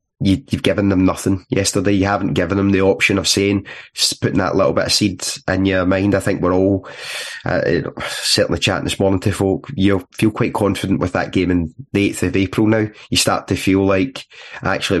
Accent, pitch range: British, 90-100 Hz